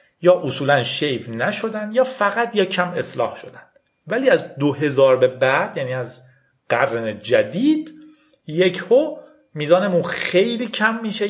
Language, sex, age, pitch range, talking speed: Persian, male, 40-59, 130-205 Hz, 135 wpm